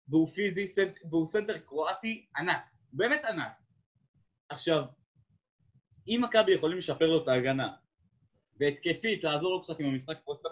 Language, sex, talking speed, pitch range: Hebrew, male, 130 wpm, 120-160 Hz